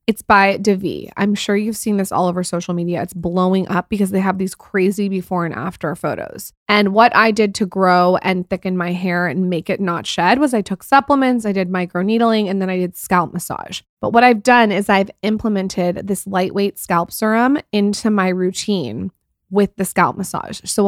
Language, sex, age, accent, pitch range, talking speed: English, female, 20-39, American, 180-210 Hz, 205 wpm